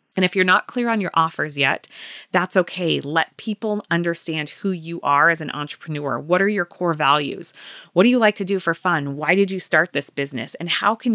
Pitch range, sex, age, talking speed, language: 150-185 Hz, female, 30-49, 225 wpm, English